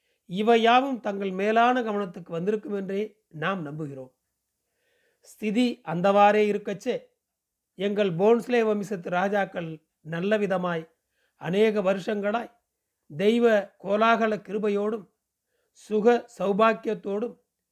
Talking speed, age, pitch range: 80 wpm, 40-59, 190-225 Hz